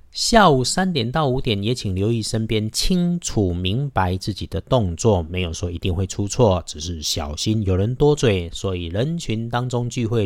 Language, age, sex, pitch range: Chinese, 50-69, male, 90-120 Hz